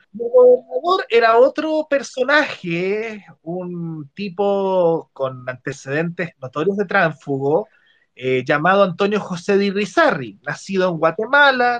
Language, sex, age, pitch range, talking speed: Spanish, male, 30-49, 135-205 Hz, 105 wpm